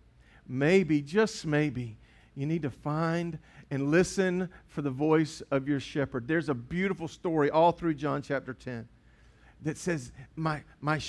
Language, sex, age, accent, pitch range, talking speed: English, male, 50-69, American, 145-205 Hz, 150 wpm